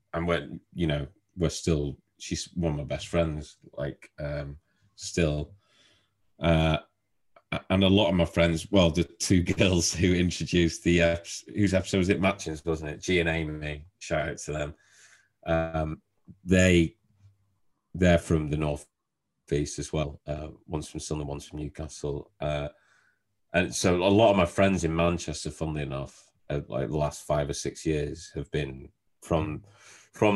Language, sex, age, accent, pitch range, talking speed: English, male, 30-49, British, 75-95 Hz, 170 wpm